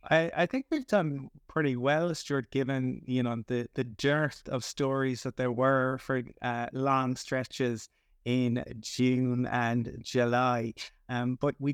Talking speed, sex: 155 wpm, male